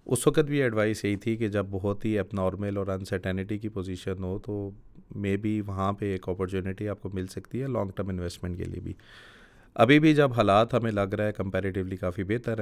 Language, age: Urdu, 30-49